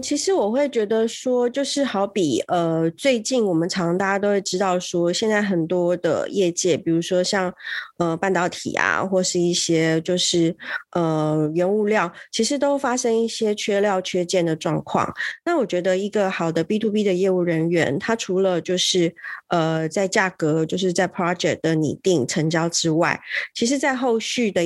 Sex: female